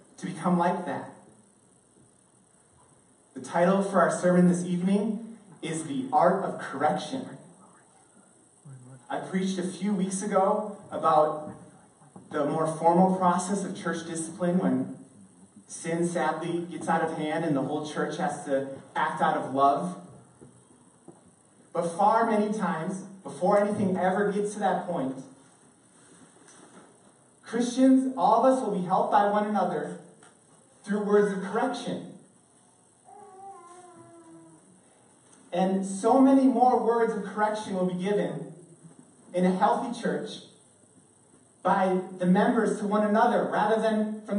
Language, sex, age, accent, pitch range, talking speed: English, male, 30-49, American, 170-215 Hz, 130 wpm